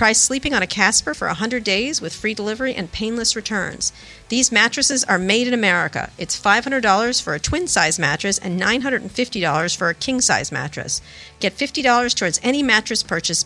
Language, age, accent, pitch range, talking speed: English, 50-69, American, 180-240 Hz, 170 wpm